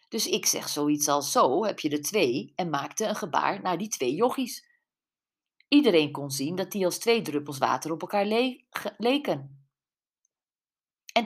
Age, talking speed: 40-59, 170 wpm